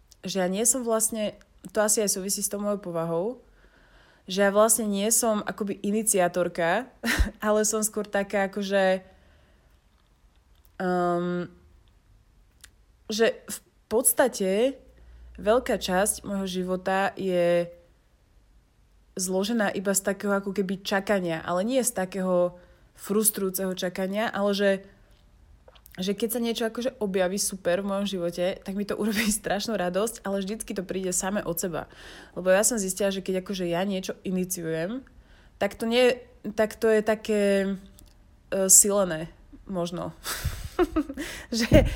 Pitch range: 175-210 Hz